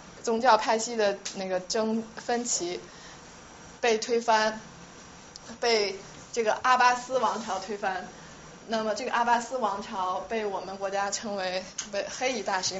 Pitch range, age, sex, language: 190-225 Hz, 20-39, female, Chinese